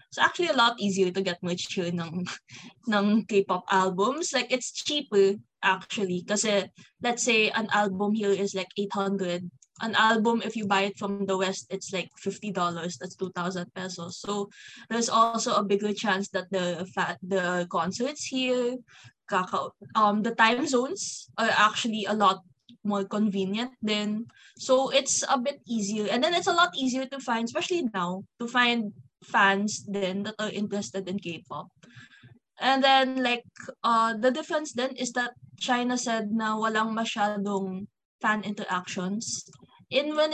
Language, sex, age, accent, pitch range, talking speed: English, female, 20-39, Filipino, 190-240 Hz, 155 wpm